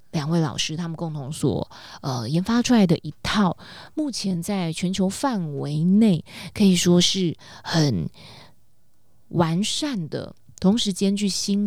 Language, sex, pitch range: Chinese, female, 155-190 Hz